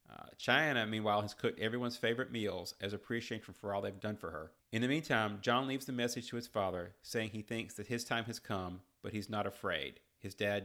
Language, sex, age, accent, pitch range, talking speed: English, male, 30-49, American, 100-120 Hz, 225 wpm